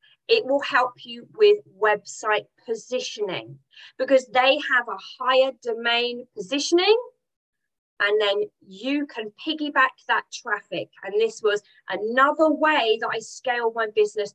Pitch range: 215-330 Hz